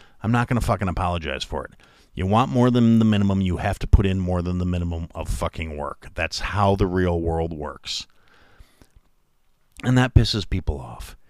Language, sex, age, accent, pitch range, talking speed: English, male, 50-69, American, 95-130 Hz, 195 wpm